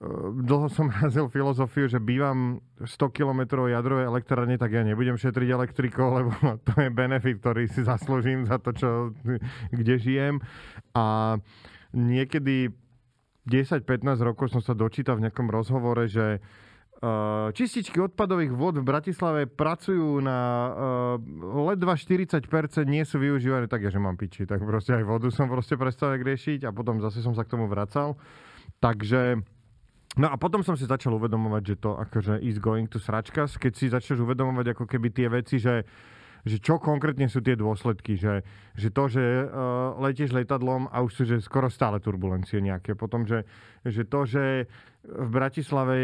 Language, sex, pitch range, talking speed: Slovak, male, 115-135 Hz, 160 wpm